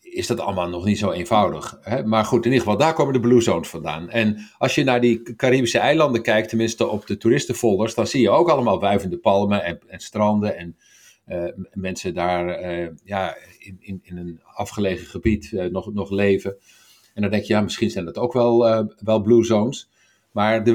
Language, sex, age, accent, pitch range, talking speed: Dutch, male, 50-69, Dutch, 95-115 Hz, 205 wpm